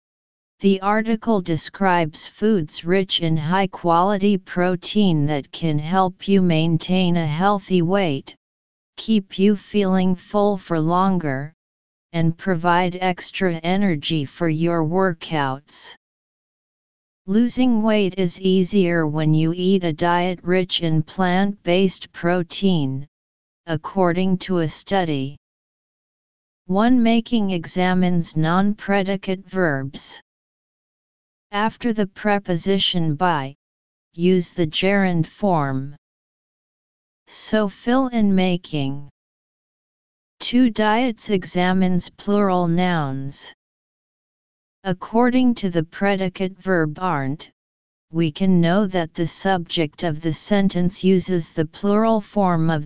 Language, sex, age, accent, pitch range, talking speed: English, female, 40-59, American, 165-195 Hz, 105 wpm